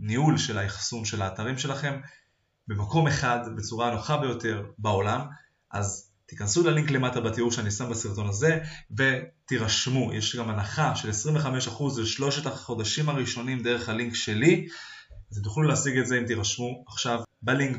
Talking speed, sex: 140 wpm, male